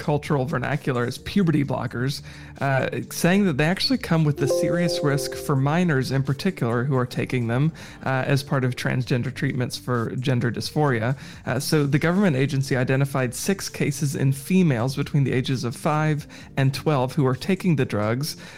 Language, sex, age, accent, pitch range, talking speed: English, male, 30-49, American, 130-155 Hz, 175 wpm